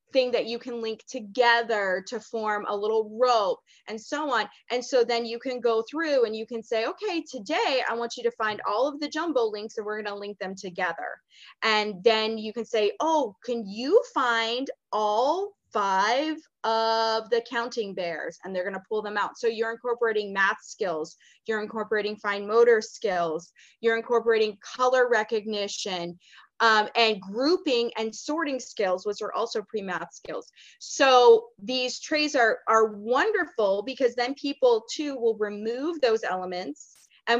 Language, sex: English, female